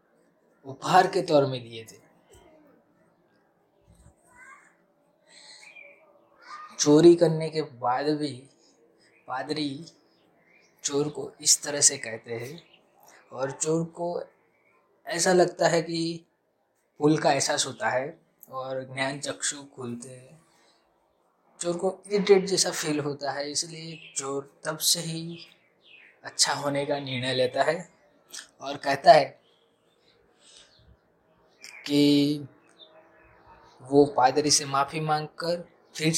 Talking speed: 105 wpm